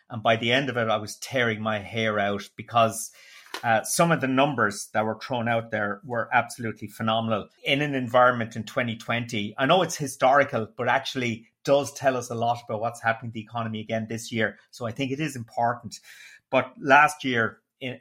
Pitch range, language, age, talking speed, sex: 110-125 Hz, English, 30-49, 205 wpm, male